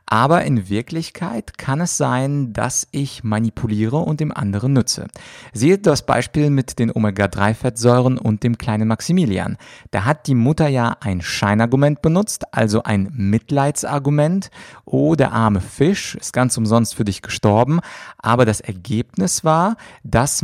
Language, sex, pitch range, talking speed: German, male, 110-140 Hz, 145 wpm